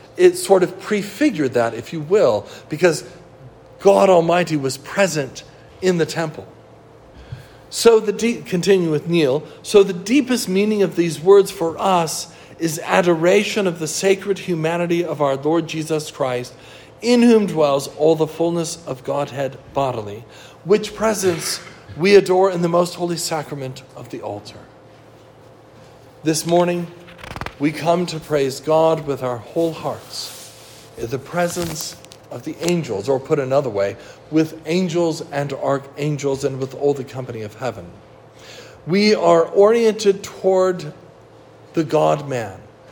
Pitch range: 130-175 Hz